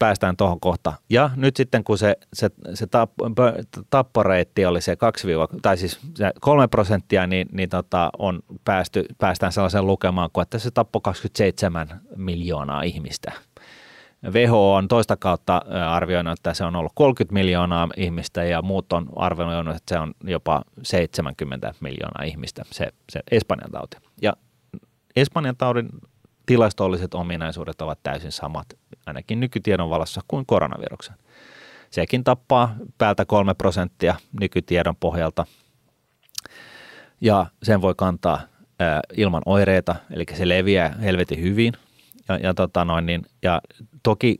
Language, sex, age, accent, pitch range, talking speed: Finnish, male, 30-49, native, 85-110 Hz, 135 wpm